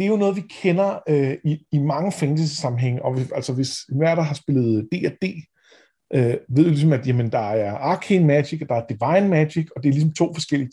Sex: male